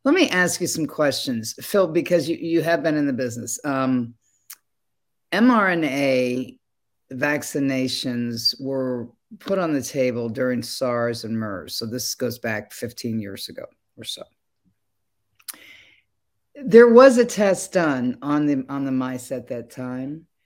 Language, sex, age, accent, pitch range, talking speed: English, female, 50-69, American, 120-155 Hz, 145 wpm